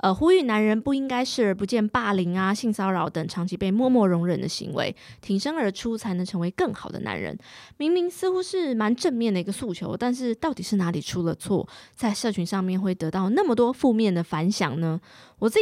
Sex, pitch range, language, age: female, 175-235 Hz, Chinese, 20-39